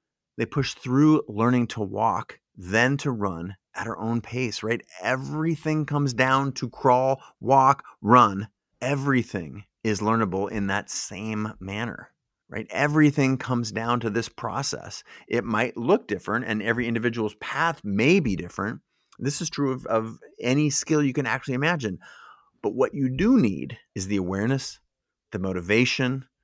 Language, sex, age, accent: English, male, 30-49, American